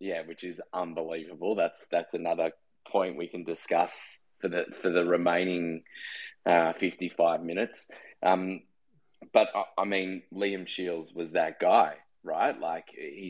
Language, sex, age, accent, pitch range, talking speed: English, male, 20-39, Australian, 80-90 Hz, 145 wpm